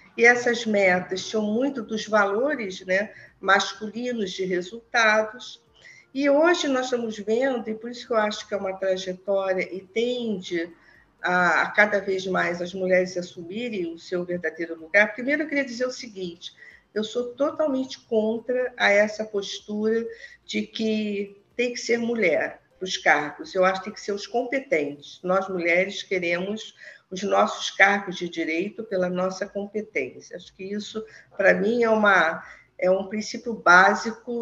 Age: 50-69